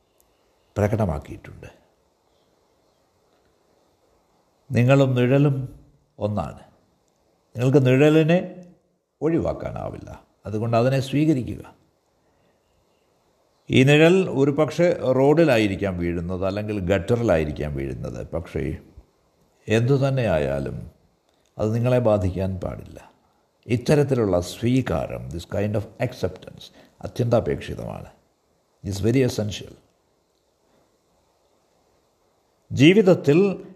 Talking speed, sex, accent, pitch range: 60 wpm, male, native, 105-145 Hz